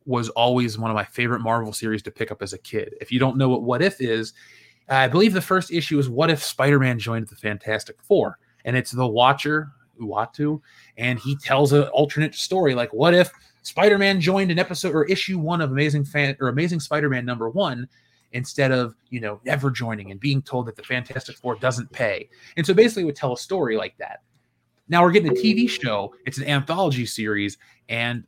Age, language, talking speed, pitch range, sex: 20-39, English, 210 wpm, 120-170 Hz, male